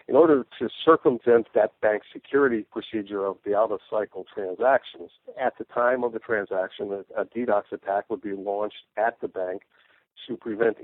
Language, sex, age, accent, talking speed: English, male, 60-79, American, 160 wpm